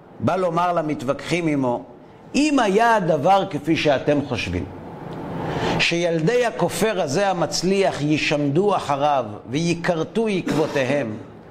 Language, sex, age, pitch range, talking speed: Hebrew, male, 50-69, 160-225 Hz, 95 wpm